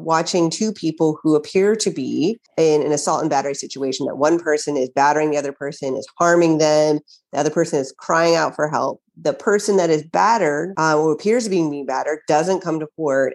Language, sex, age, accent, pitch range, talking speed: English, female, 30-49, American, 145-175 Hz, 215 wpm